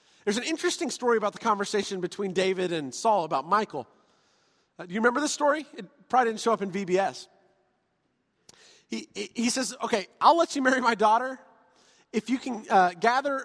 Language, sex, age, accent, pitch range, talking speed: English, male, 30-49, American, 210-290 Hz, 185 wpm